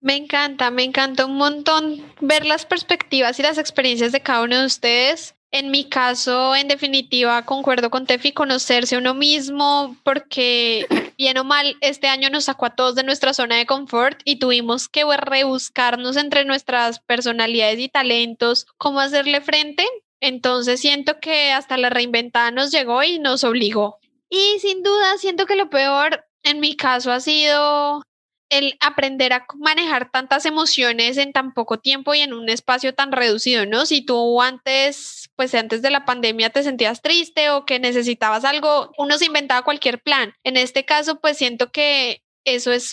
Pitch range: 245-290 Hz